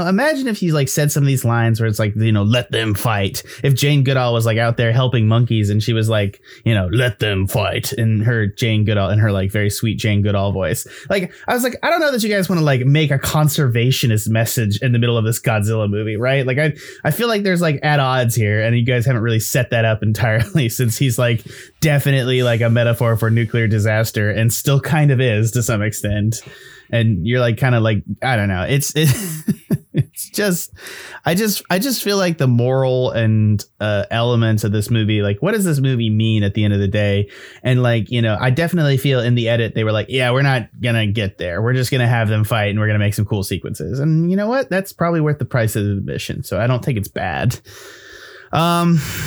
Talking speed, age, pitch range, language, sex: 240 wpm, 20-39, 110-140 Hz, English, male